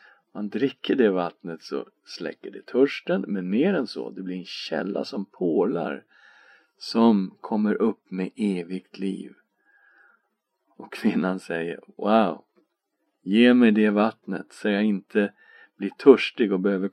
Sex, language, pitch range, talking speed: male, Swedish, 95-120 Hz, 140 wpm